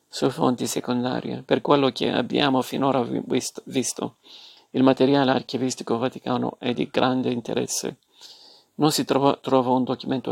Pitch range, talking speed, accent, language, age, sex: 125-135 Hz, 140 wpm, native, Italian, 50-69, male